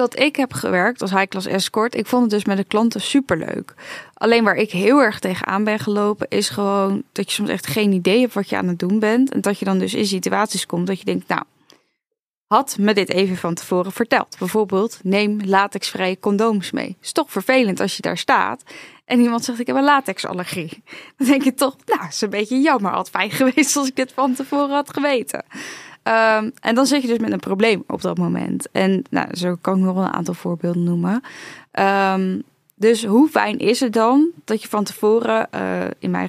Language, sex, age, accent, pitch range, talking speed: Dutch, female, 10-29, Dutch, 190-240 Hz, 220 wpm